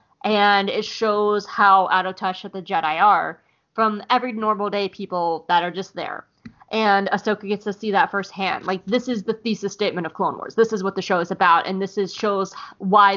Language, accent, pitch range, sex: English, American, 185-220 Hz, female